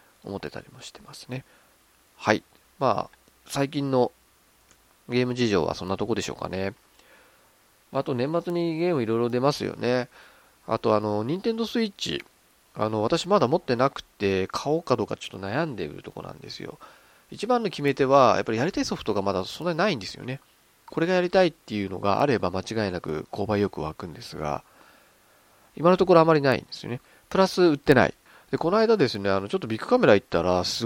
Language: Japanese